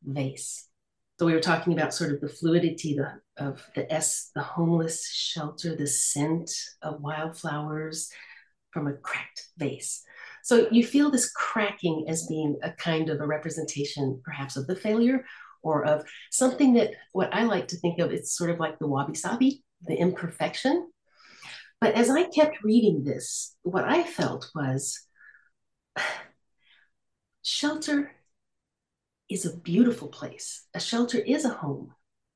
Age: 50-69